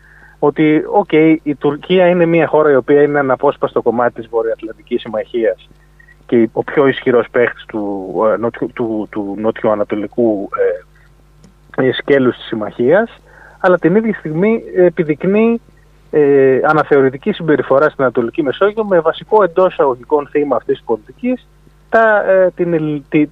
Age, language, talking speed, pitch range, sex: 30-49, Greek, 140 wpm, 125-170 Hz, male